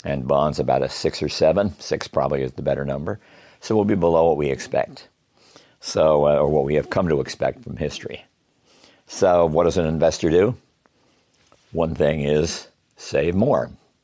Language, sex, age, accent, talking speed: English, male, 50-69, American, 180 wpm